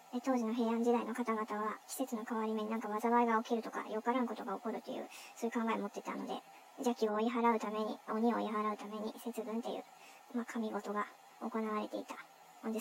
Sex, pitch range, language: male, 210-245 Hz, Japanese